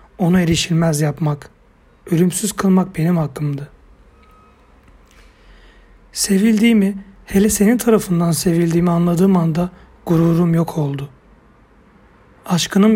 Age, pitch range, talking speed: 60-79, 160-195 Hz, 85 wpm